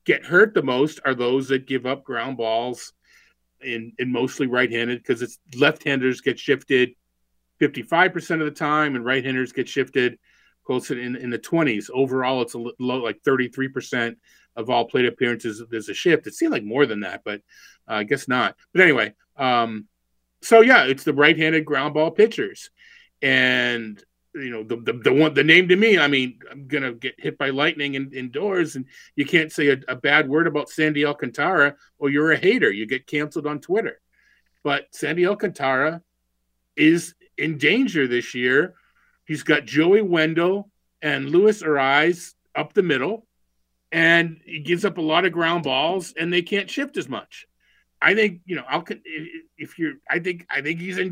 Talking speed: 180 wpm